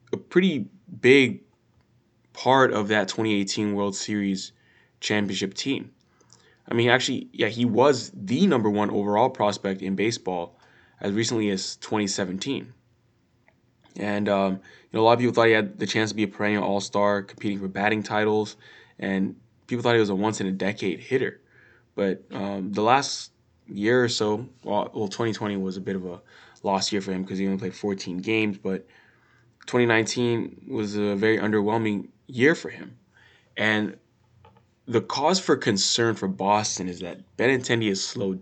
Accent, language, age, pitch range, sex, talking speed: American, English, 20-39, 100-115 Hz, male, 165 wpm